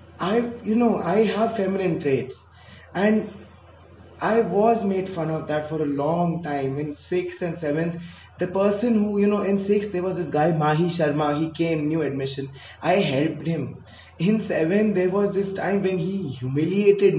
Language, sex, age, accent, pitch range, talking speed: Hindi, male, 20-39, native, 150-205 Hz, 180 wpm